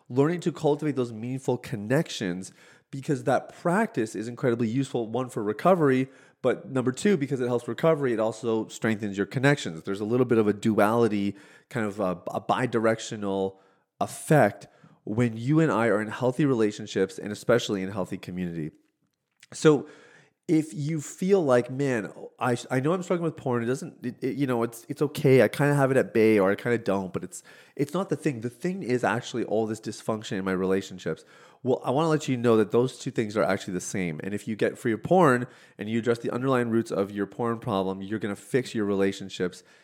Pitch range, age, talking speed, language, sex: 105-140 Hz, 30-49, 215 wpm, English, male